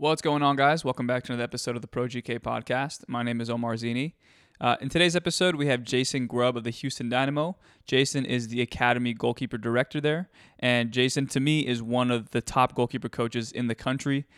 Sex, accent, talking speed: male, American, 215 wpm